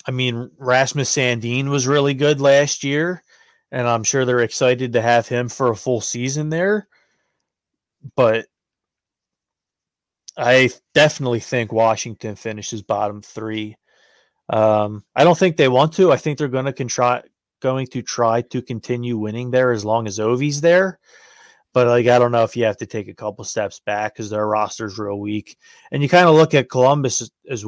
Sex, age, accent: male, 30-49, American